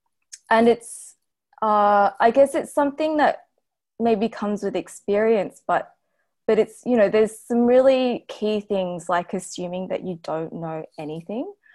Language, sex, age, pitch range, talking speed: English, female, 20-39, 175-215 Hz, 150 wpm